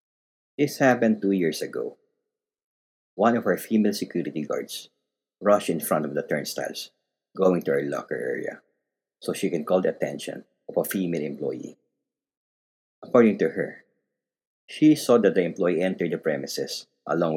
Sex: male